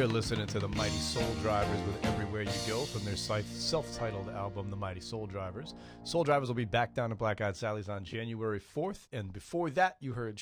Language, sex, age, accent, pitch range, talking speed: English, male, 40-59, American, 100-125 Hz, 215 wpm